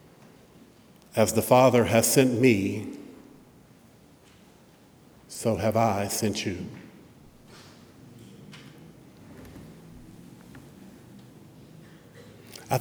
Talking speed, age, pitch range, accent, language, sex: 55 wpm, 60-79, 115-145 Hz, American, English, male